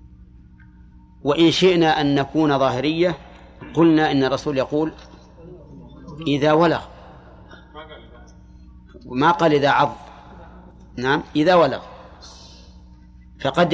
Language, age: Arabic, 40-59